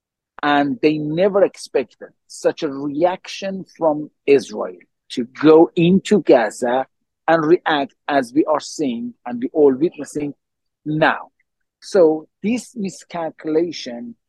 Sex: male